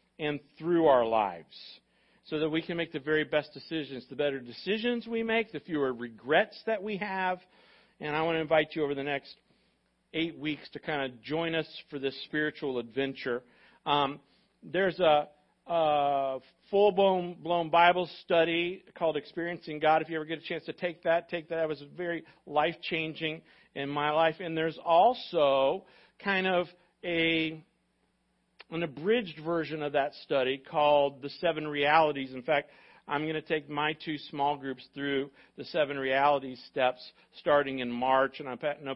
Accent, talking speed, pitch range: American, 170 wpm, 135-170 Hz